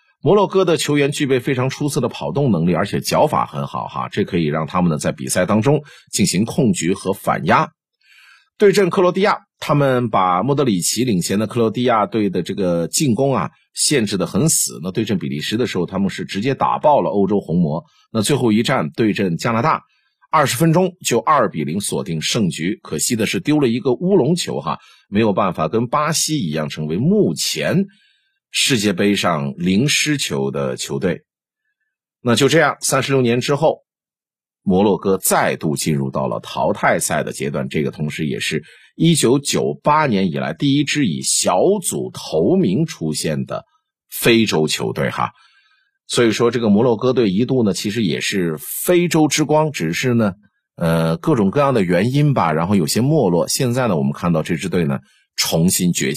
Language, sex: Chinese, male